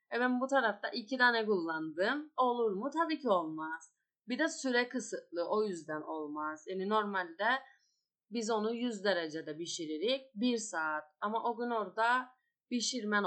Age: 30-49